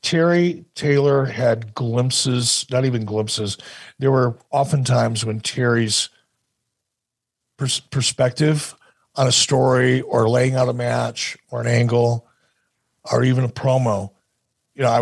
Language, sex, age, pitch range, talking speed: English, male, 50-69, 115-135 Hz, 125 wpm